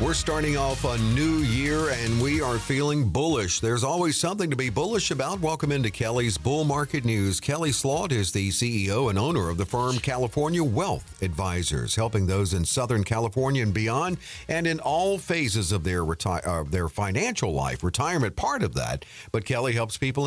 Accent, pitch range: American, 95-130 Hz